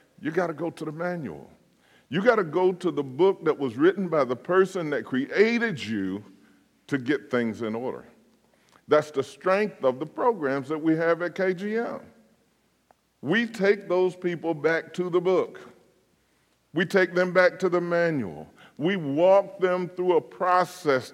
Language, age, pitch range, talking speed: English, 50-69, 125-180 Hz, 170 wpm